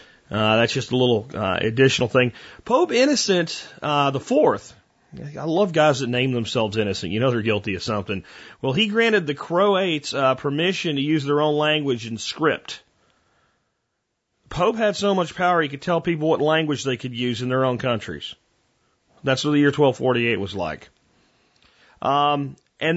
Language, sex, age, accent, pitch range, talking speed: English, male, 40-59, American, 130-195 Hz, 175 wpm